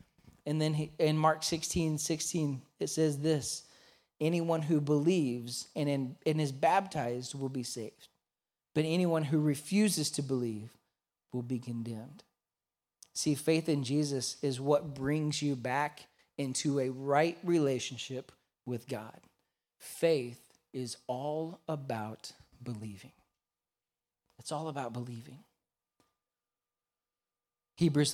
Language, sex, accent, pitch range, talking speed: English, male, American, 130-155 Hz, 110 wpm